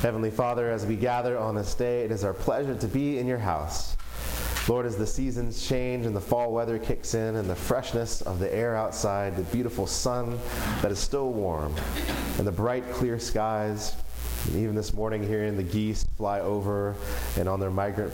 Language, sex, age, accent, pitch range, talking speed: English, male, 30-49, American, 85-115 Hz, 200 wpm